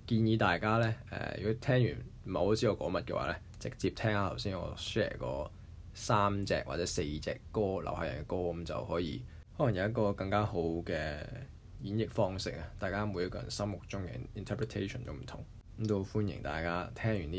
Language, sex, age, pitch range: Chinese, male, 20-39, 85-110 Hz